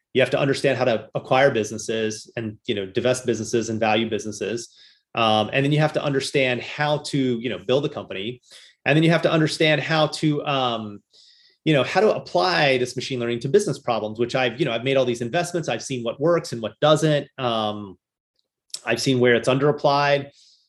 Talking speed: 210 wpm